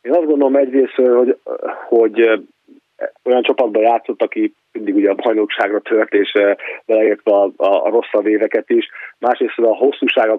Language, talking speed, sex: Hungarian, 155 wpm, male